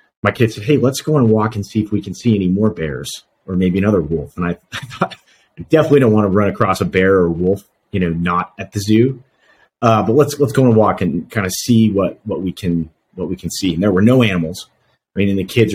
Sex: male